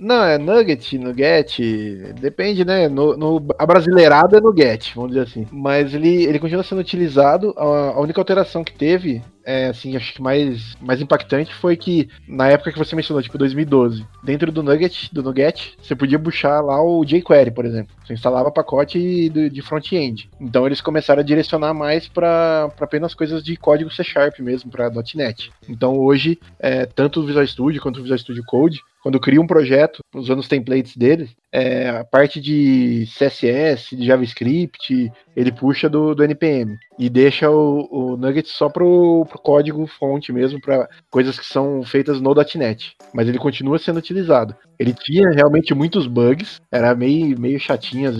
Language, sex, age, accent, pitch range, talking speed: Portuguese, male, 20-39, Brazilian, 130-155 Hz, 175 wpm